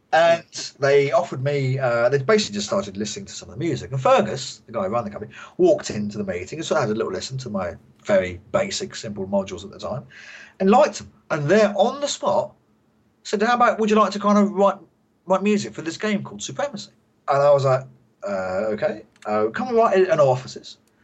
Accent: British